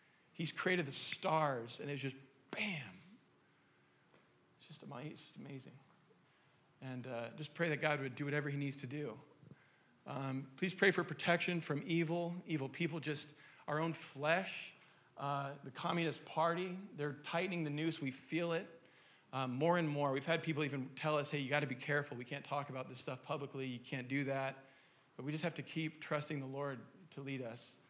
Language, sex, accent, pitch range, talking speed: English, male, American, 135-165 Hz, 185 wpm